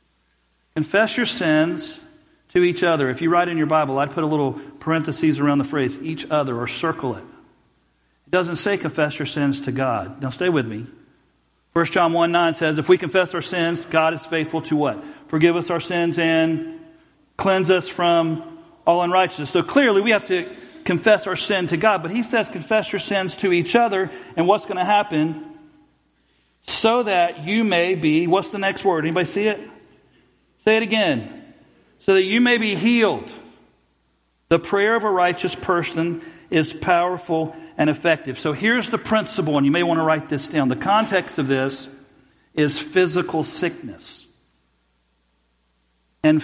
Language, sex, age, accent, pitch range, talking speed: English, male, 50-69, American, 150-190 Hz, 175 wpm